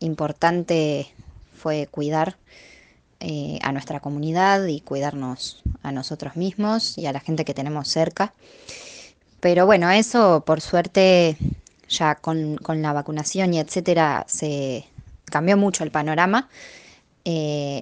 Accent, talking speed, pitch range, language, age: Argentinian, 125 wpm, 150-175 Hz, Spanish, 20-39